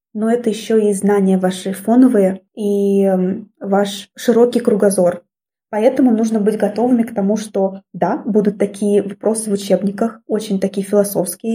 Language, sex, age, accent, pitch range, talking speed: Russian, female, 20-39, native, 200-225 Hz, 140 wpm